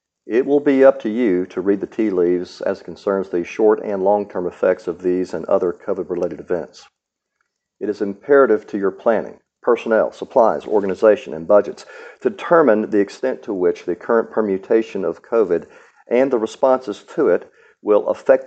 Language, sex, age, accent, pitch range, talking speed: English, male, 50-69, American, 100-135 Hz, 170 wpm